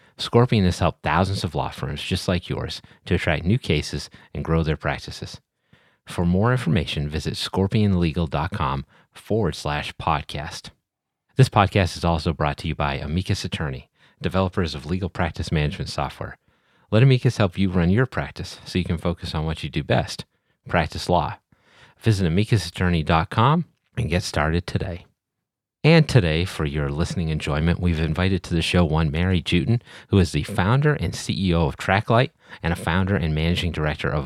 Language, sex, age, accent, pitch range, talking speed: English, male, 30-49, American, 80-105 Hz, 165 wpm